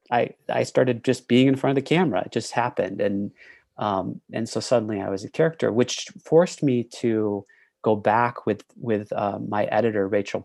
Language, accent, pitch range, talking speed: English, American, 105-140 Hz, 195 wpm